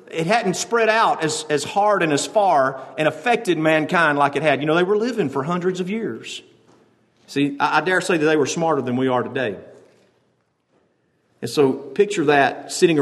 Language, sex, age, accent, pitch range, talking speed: English, male, 50-69, American, 130-170 Hz, 200 wpm